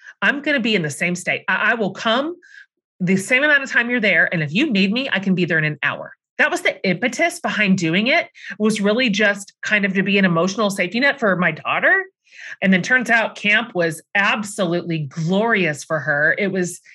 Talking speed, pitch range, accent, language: 225 wpm, 175-255 Hz, American, English